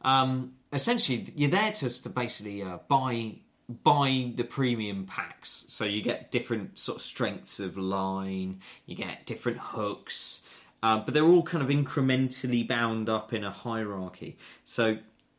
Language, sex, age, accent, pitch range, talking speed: English, male, 20-39, British, 95-125 Hz, 150 wpm